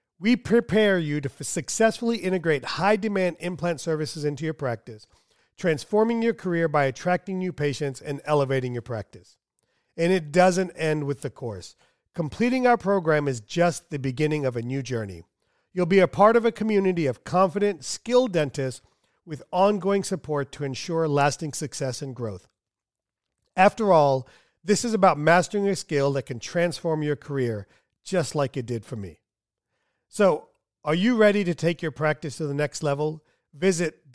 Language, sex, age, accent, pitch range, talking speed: English, male, 40-59, American, 135-185 Hz, 165 wpm